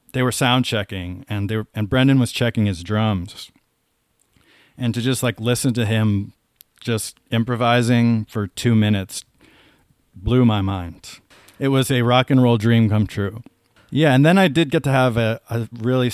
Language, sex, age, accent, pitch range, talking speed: English, male, 40-59, American, 105-130 Hz, 180 wpm